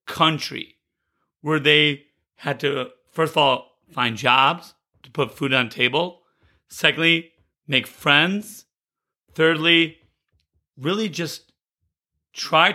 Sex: male